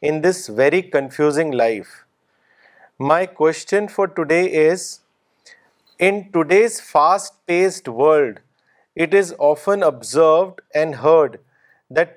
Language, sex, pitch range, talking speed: Urdu, male, 155-190 Hz, 105 wpm